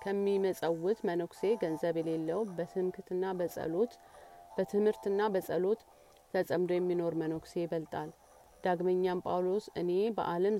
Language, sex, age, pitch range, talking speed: Amharic, female, 30-49, 165-195 Hz, 80 wpm